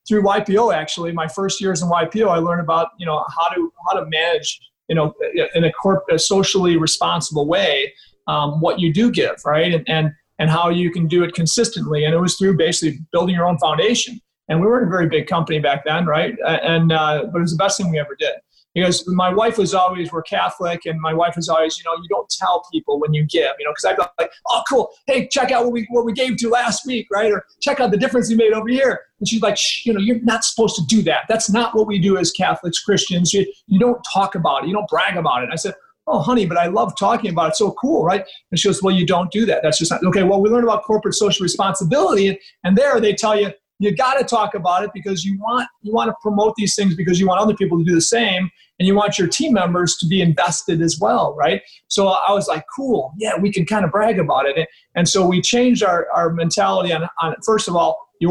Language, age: English, 30-49